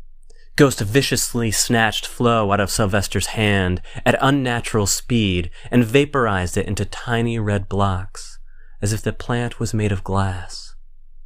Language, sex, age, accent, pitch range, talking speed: English, male, 30-49, American, 85-110 Hz, 140 wpm